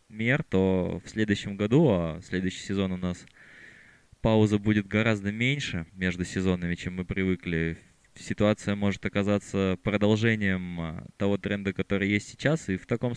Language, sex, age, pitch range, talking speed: Russian, male, 20-39, 95-115 Hz, 145 wpm